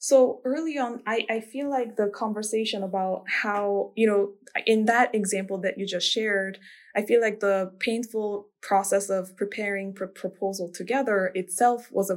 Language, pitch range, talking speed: English, 185-215 Hz, 175 wpm